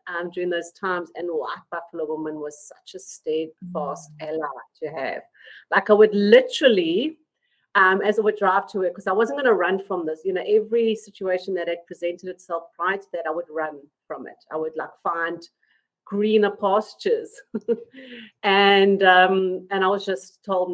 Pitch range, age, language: 175-235 Hz, 40-59, English